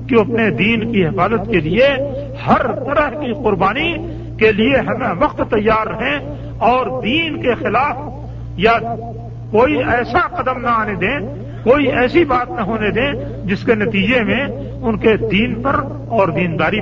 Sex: male